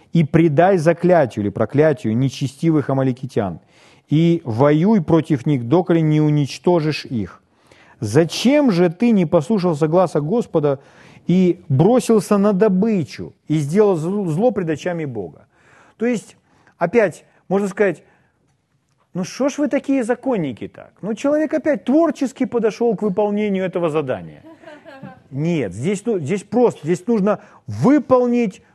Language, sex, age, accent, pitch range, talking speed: Russian, male, 40-59, native, 150-225 Hz, 125 wpm